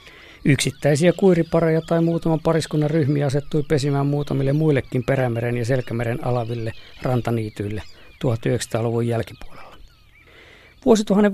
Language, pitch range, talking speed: Finnish, 130-165 Hz, 95 wpm